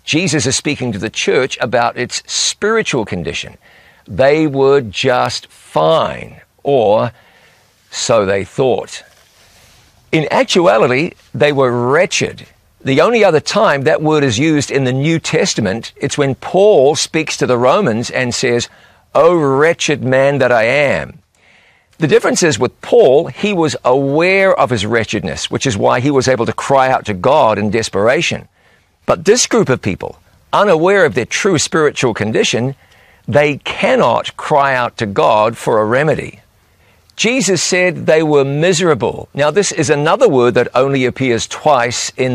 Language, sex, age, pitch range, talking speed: English, male, 50-69, 120-160 Hz, 155 wpm